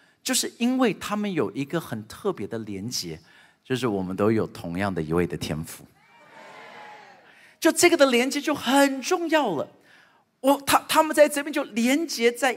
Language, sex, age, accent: Chinese, male, 50-69, native